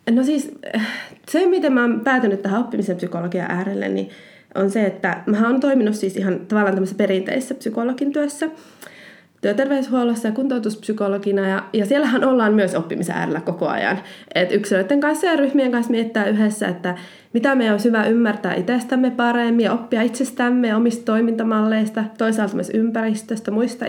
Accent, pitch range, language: native, 205-260 Hz, Finnish